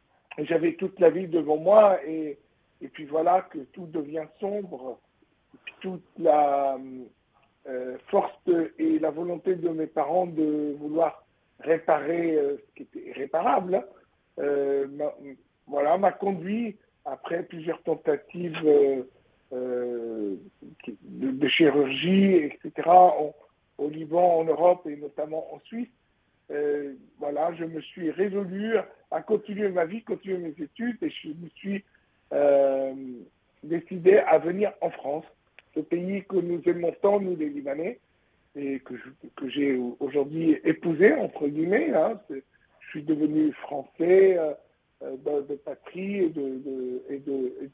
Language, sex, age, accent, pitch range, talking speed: French, male, 60-79, French, 145-190 Hz, 145 wpm